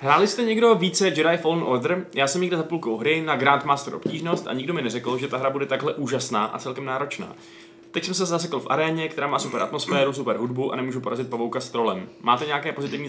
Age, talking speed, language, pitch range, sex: 20-39, 230 wpm, Czech, 130-175 Hz, male